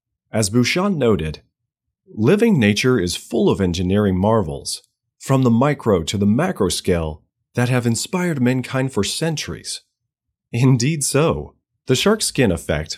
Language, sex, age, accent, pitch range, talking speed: English, male, 30-49, American, 95-130 Hz, 135 wpm